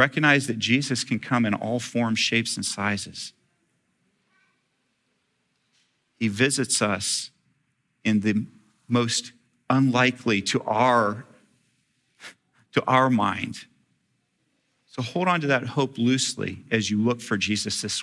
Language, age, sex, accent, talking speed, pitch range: English, 40-59, male, American, 115 wpm, 115-145 Hz